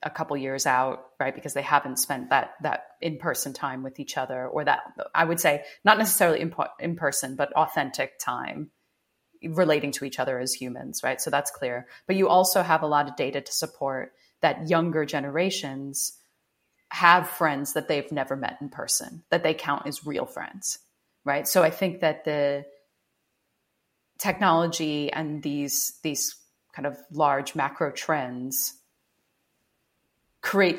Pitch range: 135-165 Hz